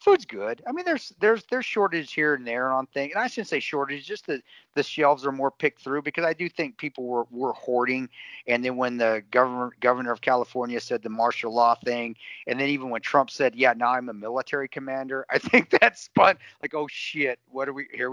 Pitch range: 115-150 Hz